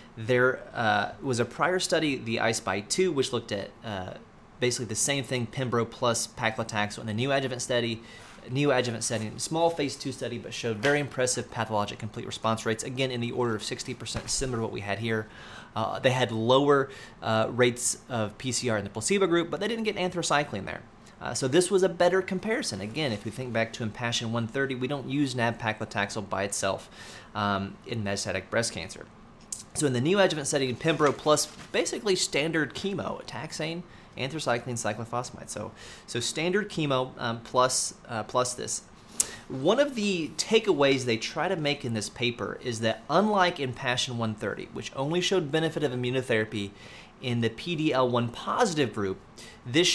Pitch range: 115-145 Hz